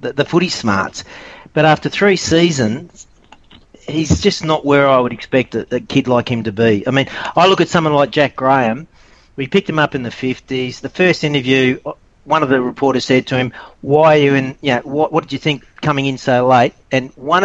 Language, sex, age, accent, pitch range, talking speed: English, male, 40-59, Australian, 120-150 Hz, 225 wpm